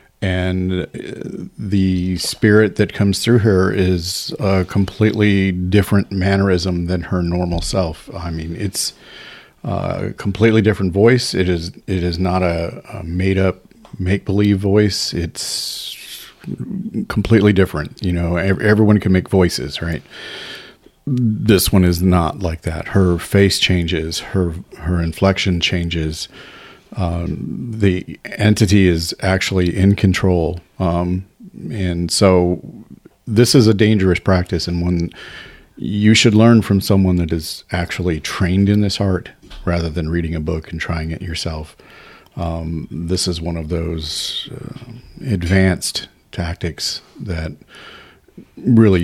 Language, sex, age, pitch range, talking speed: English, male, 40-59, 85-105 Hz, 130 wpm